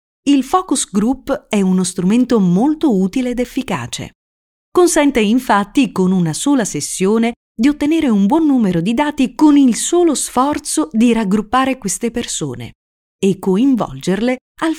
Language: Italian